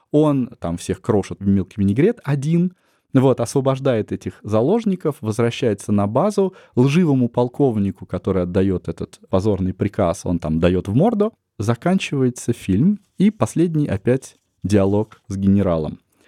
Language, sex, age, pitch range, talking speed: Russian, male, 20-39, 95-140 Hz, 130 wpm